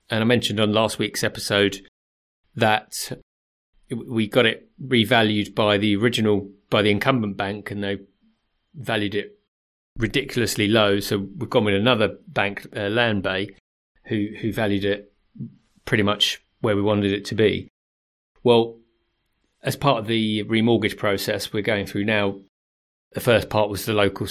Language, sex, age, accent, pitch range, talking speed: English, male, 30-49, British, 100-115 Hz, 155 wpm